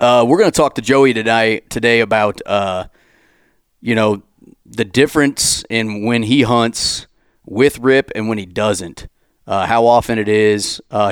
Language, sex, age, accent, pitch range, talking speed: English, male, 30-49, American, 100-115 Hz, 165 wpm